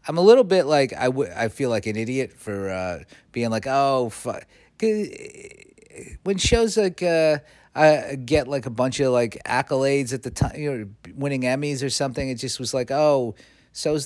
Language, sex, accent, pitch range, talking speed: English, male, American, 100-140 Hz, 185 wpm